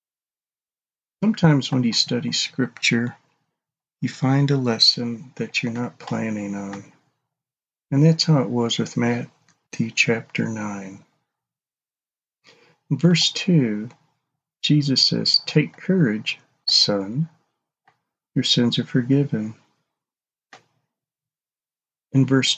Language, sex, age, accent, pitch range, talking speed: English, male, 50-69, American, 120-160 Hz, 100 wpm